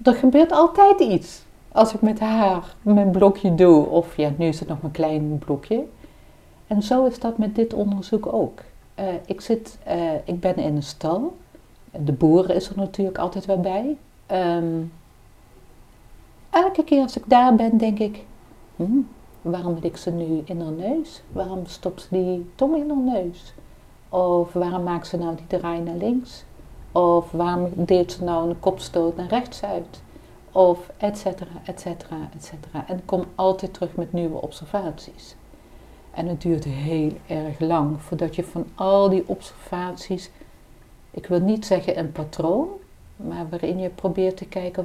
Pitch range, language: 170-210 Hz, Dutch